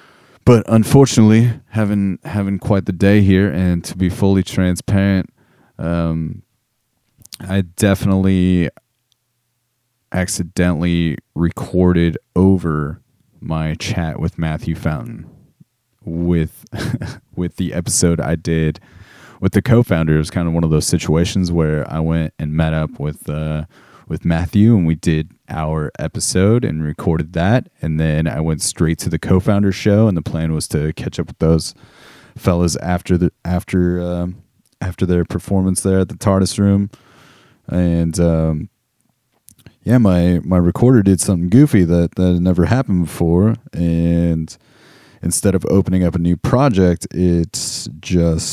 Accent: American